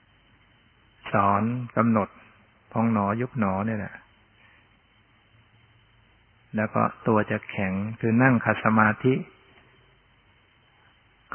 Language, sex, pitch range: Thai, male, 105-115 Hz